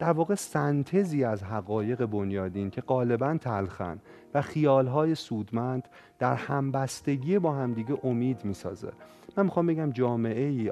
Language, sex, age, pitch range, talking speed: Persian, male, 30-49, 110-150 Hz, 125 wpm